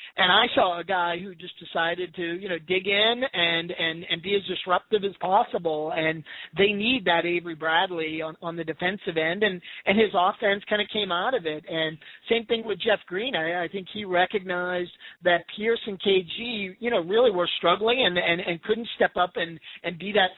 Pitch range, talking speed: 175-210 Hz, 210 wpm